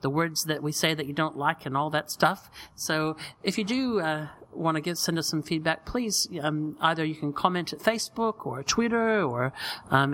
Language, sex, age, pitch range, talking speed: English, male, 40-59, 155-195 Hz, 215 wpm